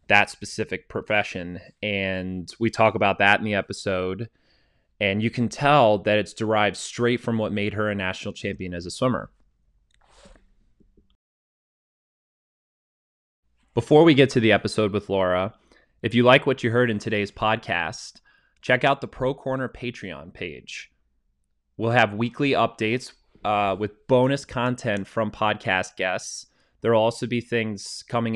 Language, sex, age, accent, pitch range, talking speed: English, male, 20-39, American, 100-115 Hz, 150 wpm